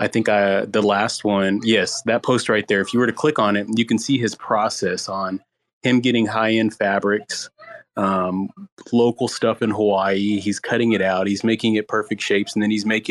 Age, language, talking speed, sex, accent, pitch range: 30-49, English, 205 wpm, male, American, 100-110 Hz